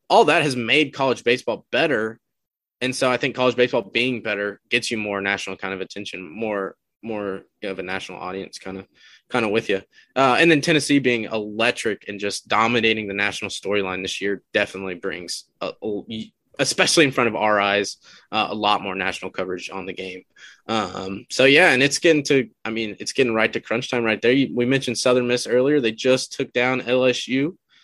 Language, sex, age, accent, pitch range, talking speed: English, male, 20-39, American, 105-135 Hz, 205 wpm